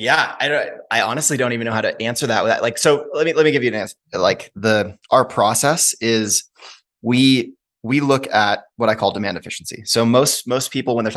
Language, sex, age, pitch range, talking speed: English, male, 20-39, 105-120 Hz, 225 wpm